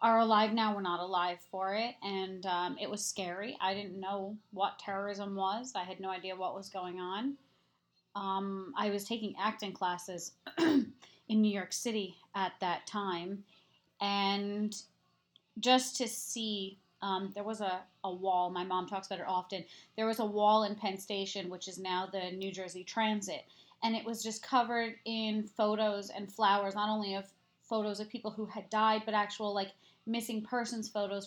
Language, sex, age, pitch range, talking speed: English, female, 30-49, 185-215 Hz, 180 wpm